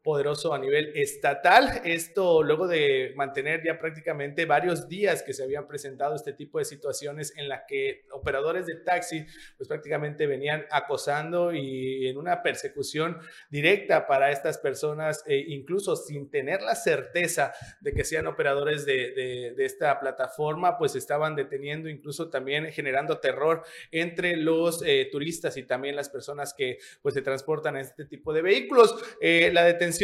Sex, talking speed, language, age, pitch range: male, 160 wpm, Spanish, 30-49, 150-195 Hz